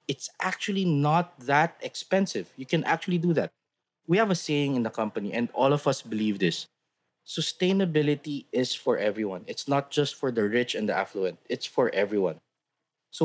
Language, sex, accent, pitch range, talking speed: English, male, Filipino, 125-165 Hz, 180 wpm